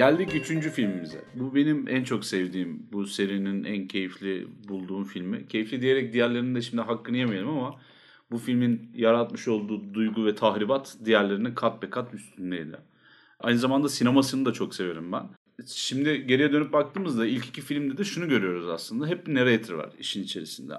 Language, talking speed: Turkish, 165 wpm